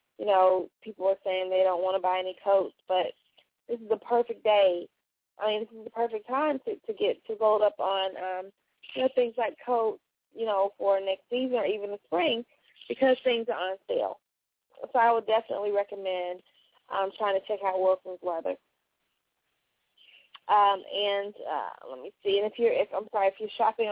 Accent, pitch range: American, 195-235 Hz